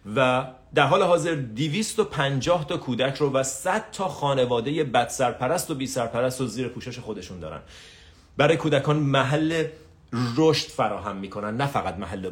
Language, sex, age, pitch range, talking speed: Persian, male, 30-49, 110-150 Hz, 140 wpm